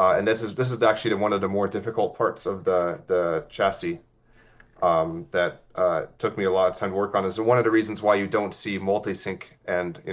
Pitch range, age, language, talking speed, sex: 95-120 Hz, 30-49, English, 245 wpm, male